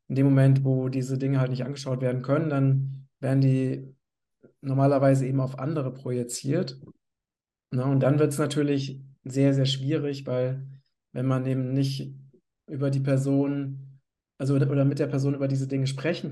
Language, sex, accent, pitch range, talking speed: German, male, German, 130-145 Hz, 160 wpm